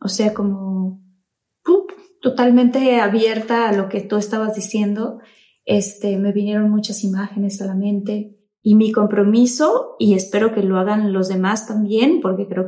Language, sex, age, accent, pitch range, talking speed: Spanish, female, 20-39, Mexican, 205-240 Hz, 155 wpm